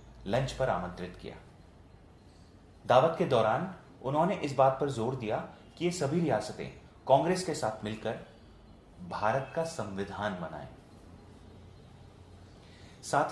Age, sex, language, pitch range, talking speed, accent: 30-49, male, Hindi, 95-155 Hz, 115 wpm, native